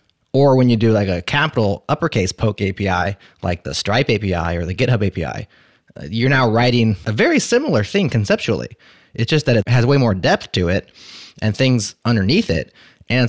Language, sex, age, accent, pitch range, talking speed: English, male, 20-39, American, 95-120 Hz, 185 wpm